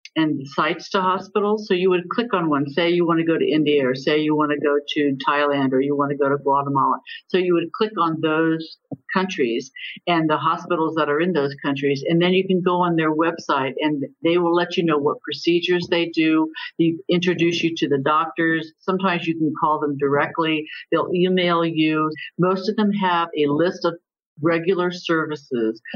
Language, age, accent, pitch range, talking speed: English, 50-69, American, 150-175 Hz, 205 wpm